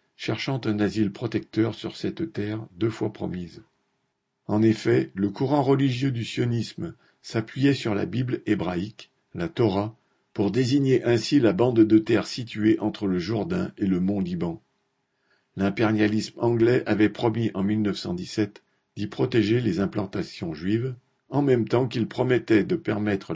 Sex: male